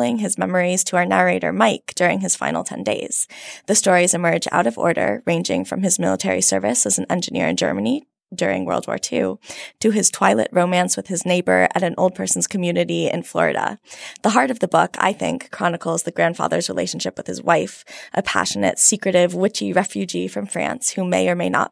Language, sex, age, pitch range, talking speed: English, female, 20-39, 150-200 Hz, 195 wpm